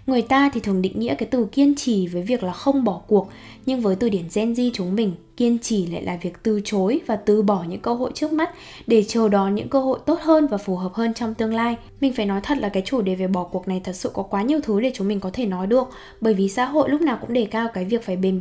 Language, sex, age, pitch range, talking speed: Vietnamese, female, 10-29, 200-260 Hz, 295 wpm